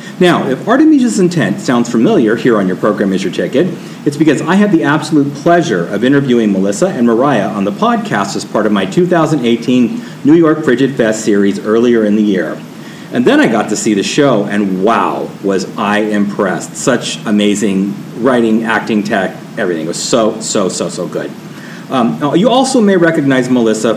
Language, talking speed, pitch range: English, 190 wpm, 110-165 Hz